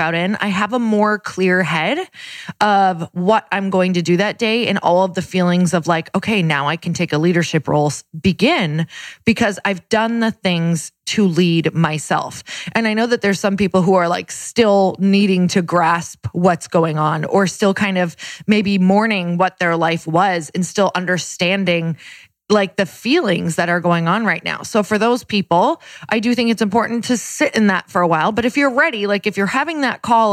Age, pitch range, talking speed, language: 20-39, 175-215 Hz, 210 wpm, English